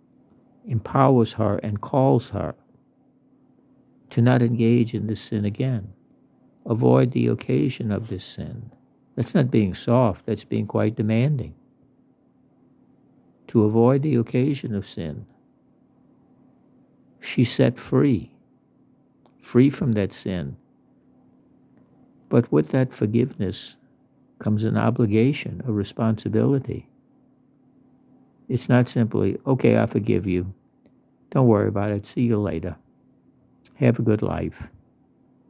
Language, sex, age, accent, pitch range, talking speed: English, male, 60-79, American, 105-125 Hz, 110 wpm